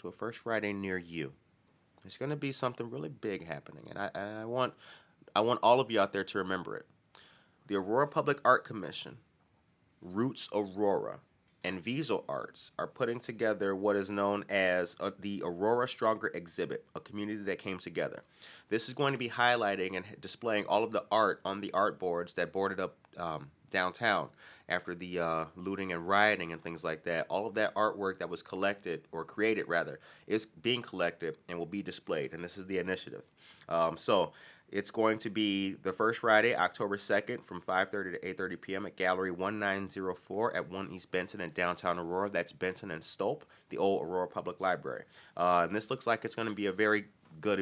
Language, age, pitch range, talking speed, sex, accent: English, 30-49, 90-110 Hz, 195 wpm, male, American